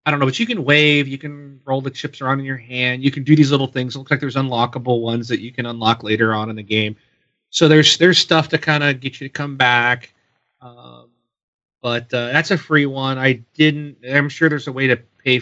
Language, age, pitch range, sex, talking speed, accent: English, 30-49, 115-155 Hz, male, 255 wpm, American